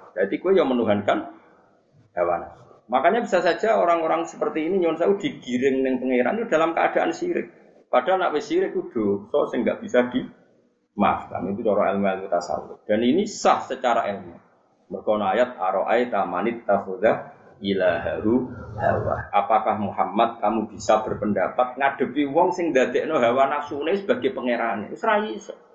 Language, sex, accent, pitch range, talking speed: Indonesian, male, native, 110-170 Hz, 150 wpm